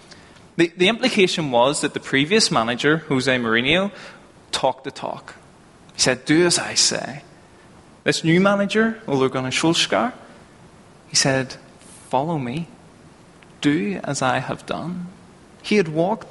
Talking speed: 135 wpm